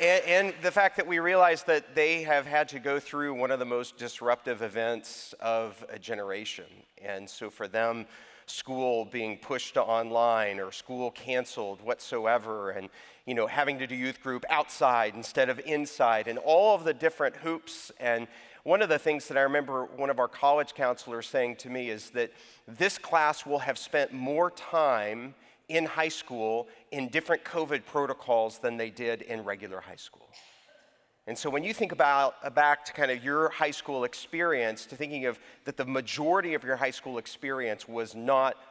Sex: male